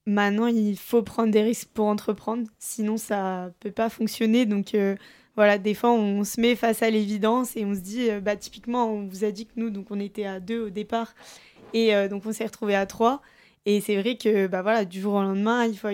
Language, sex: French, female